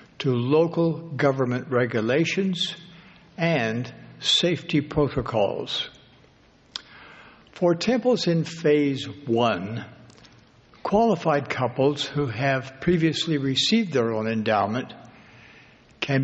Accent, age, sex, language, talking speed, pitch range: American, 60-79, male, English, 80 wpm, 125-160 Hz